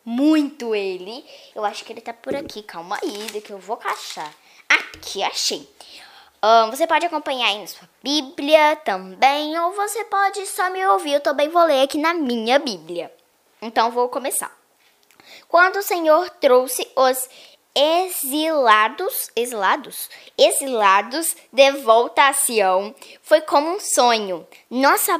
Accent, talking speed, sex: Brazilian, 140 wpm, female